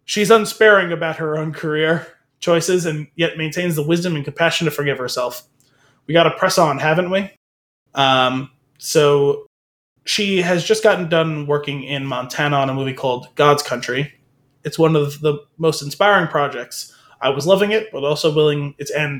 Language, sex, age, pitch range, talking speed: English, male, 20-39, 130-165 Hz, 175 wpm